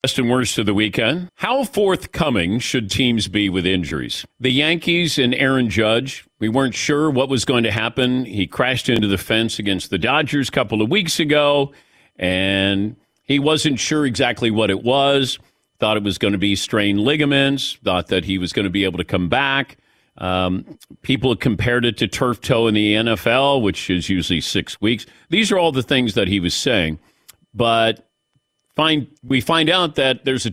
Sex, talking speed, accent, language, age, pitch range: male, 195 wpm, American, English, 50-69, 105-145 Hz